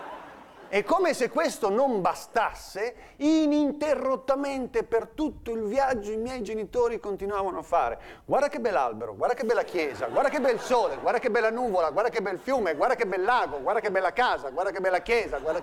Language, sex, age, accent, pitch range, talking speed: Italian, male, 40-59, native, 190-295 Hz, 190 wpm